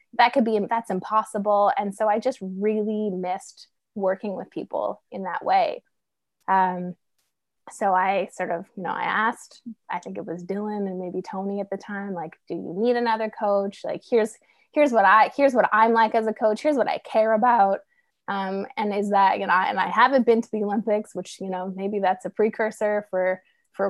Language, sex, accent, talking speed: English, female, American, 205 wpm